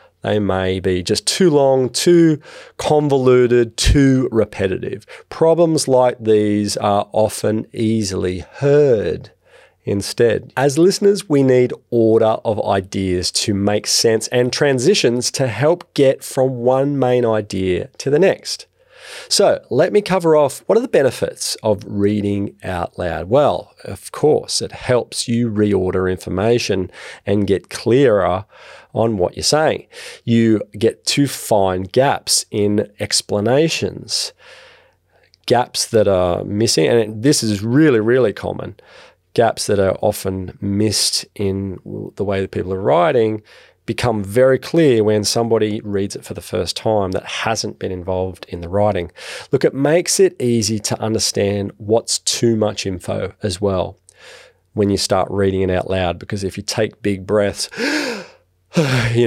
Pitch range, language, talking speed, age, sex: 100-125 Hz, English, 145 wpm, 40-59, male